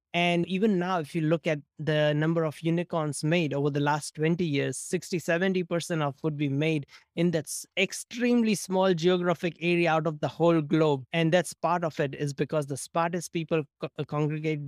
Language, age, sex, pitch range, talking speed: English, 20-39, male, 145-175 Hz, 185 wpm